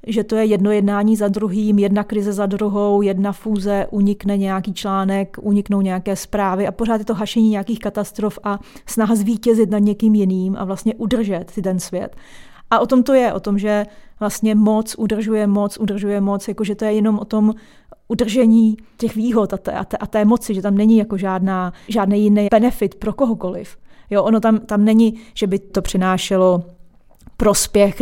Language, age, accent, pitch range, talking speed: Czech, 30-49, native, 195-220 Hz, 185 wpm